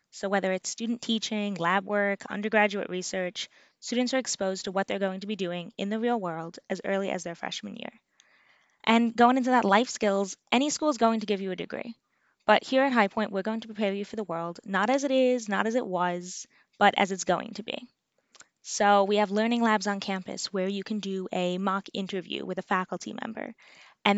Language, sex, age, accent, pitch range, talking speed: English, female, 10-29, American, 195-230 Hz, 225 wpm